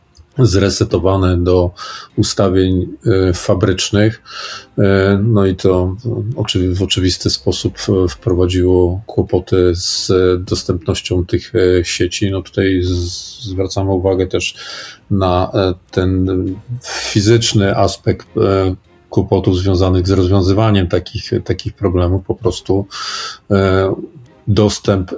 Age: 40-59